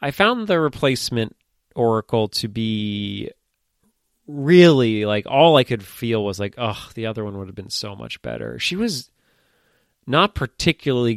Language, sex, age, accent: English, male, 30-49, American